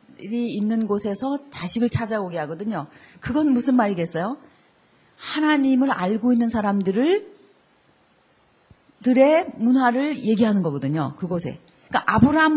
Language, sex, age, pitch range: Korean, female, 40-59, 210-275 Hz